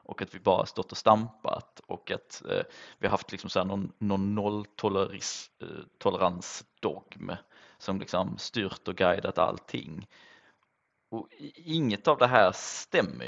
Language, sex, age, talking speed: Swedish, male, 20-39, 145 wpm